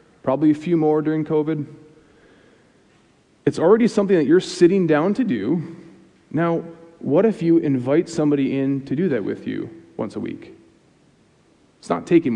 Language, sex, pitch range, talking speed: English, male, 135-170 Hz, 160 wpm